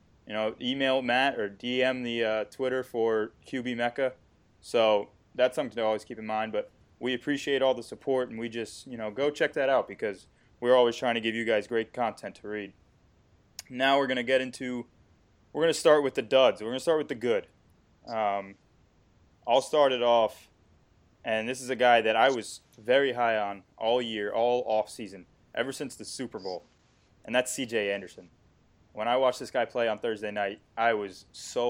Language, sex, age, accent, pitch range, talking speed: English, male, 20-39, American, 105-125 Hz, 210 wpm